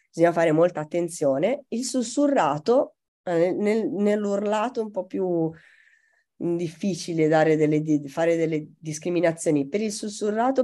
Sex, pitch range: female, 150-190 Hz